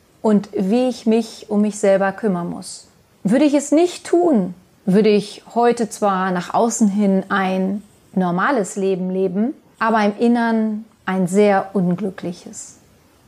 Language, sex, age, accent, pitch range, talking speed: German, female, 30-49, German, 200-250 Hz, 140 wpm